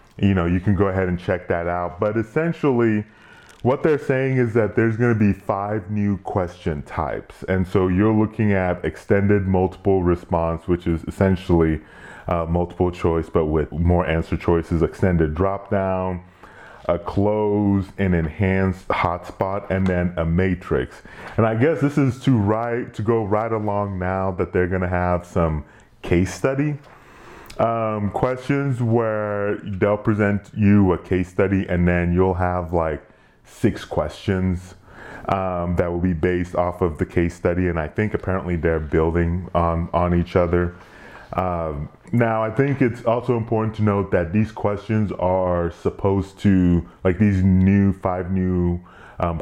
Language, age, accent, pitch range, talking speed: English, 30-49, American, 90-105 Hz, 160 wpm